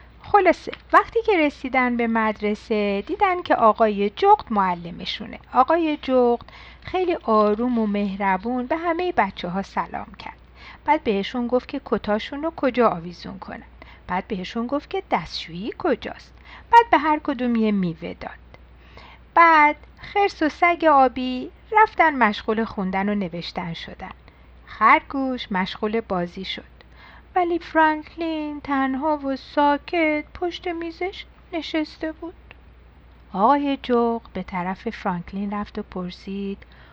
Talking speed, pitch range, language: 125 wpm, 205-310 Hz, Persian